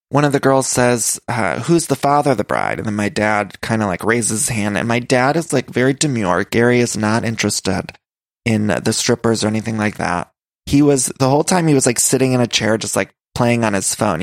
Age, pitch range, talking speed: 20-39, 110-135 Hz, 245 wpm